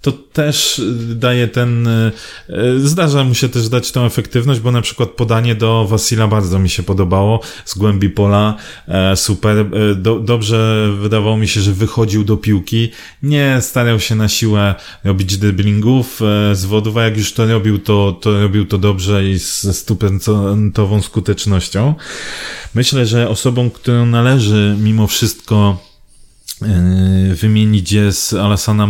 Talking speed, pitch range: 140 wpm, 105-120 Hz